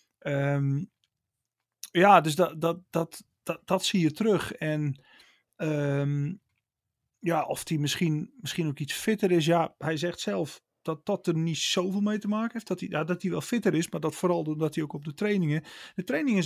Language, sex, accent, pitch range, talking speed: Dutch, male, Dutch, 150-190 Hz, 195 wpm